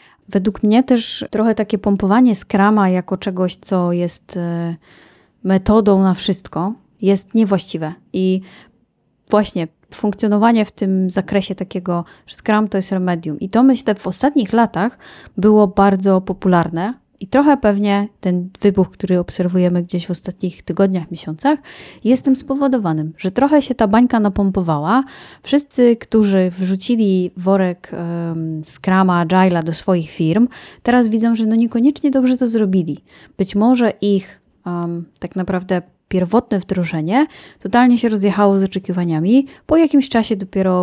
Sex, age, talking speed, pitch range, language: female, 20-39, 135 wpm, 180-220 Hz, Polish